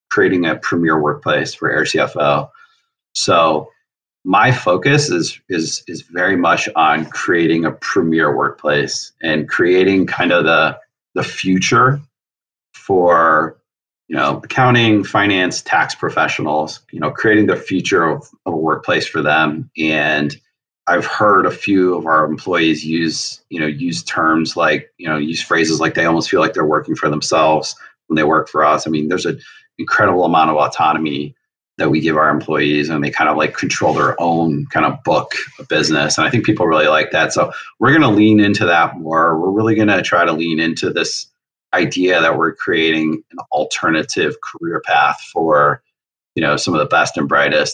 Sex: male